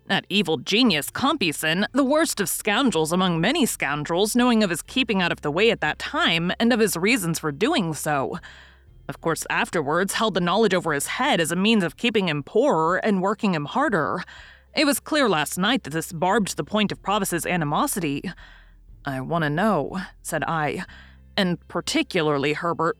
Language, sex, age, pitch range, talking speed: English, female, 30-49, 155-215 Hz, 185 wpm